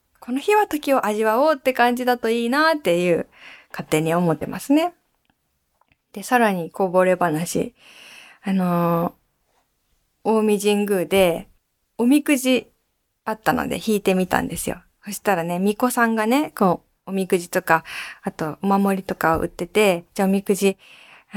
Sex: female